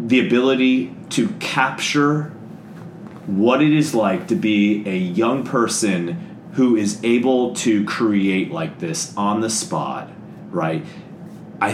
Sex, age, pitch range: male, 30-49, 105-145 Hz